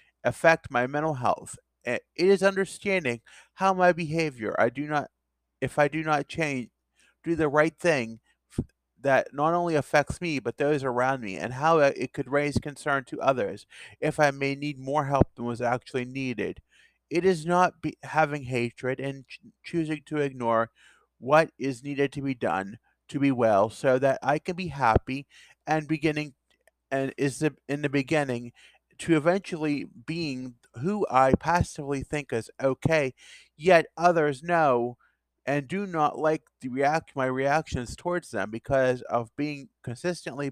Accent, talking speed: American, 160 wpm